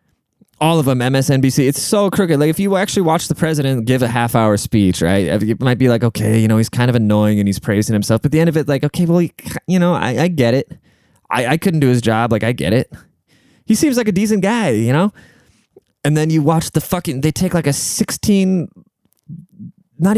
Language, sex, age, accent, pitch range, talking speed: English, male, 20-39, American, 105-150 Hz, 240 wpm